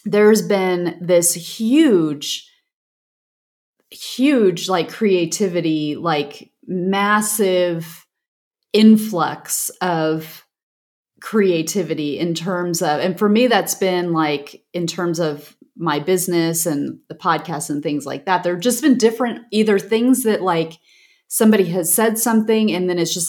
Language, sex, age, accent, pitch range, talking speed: English, female, 30-49, American, 170-220 Hz, 130 wpm